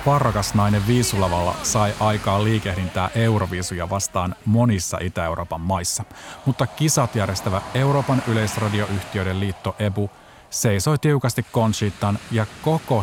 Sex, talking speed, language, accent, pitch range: male, 105 wpm, Finnish, native, 95-120 Hz